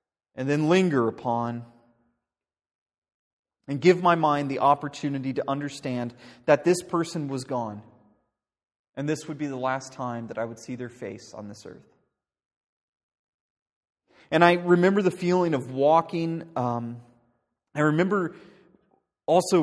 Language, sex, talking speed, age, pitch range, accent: English, male, 135 wpm, 30-49, 115-145 Hz, American